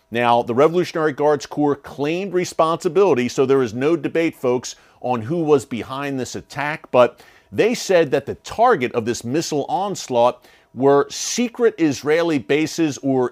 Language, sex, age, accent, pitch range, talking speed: English, male, 40-59, American, 125-160 Hz, 155 wpm